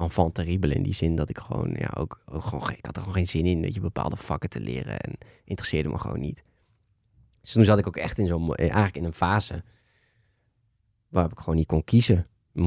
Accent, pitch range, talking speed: Dutch, 85-105 Hz, 225 wpm